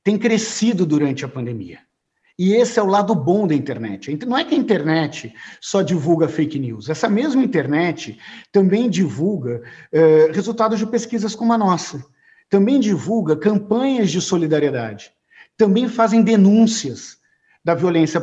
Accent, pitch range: Brazilian, 150-200 Hz